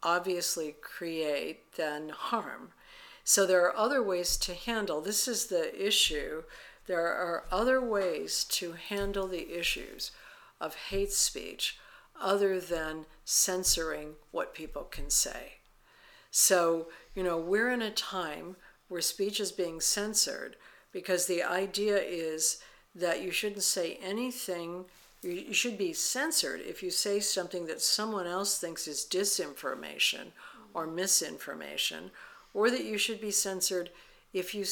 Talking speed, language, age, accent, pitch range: 135 wpm, English, 60-79, American, 170-210 Hz